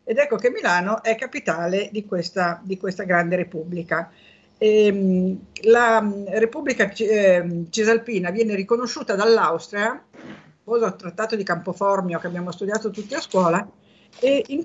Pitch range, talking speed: 180-235 Hz, 125 wpm